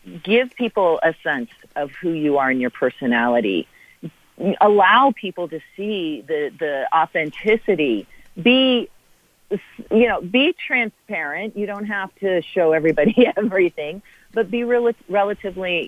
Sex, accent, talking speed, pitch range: female, American, 125 wpm, 155-215 Hz